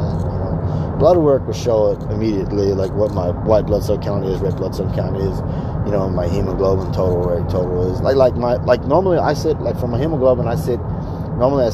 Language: English